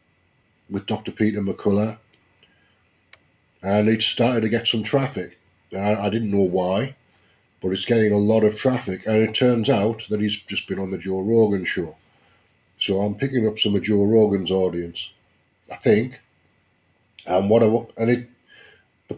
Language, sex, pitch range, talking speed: English, male, 100-120 Hz, 170 wpm